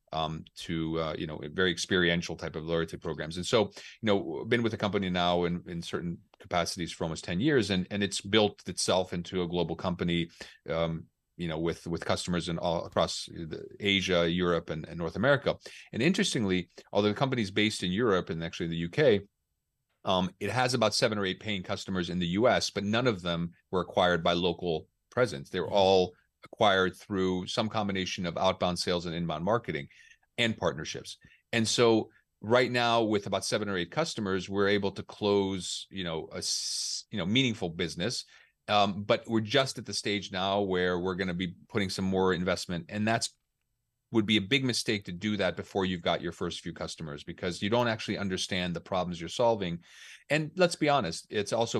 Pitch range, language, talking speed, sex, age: 85-110 Hz, English, 200 wpm, male, 40-59